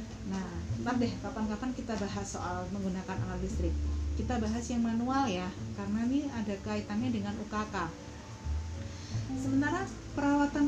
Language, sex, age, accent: Indonesian, female, 30-49, native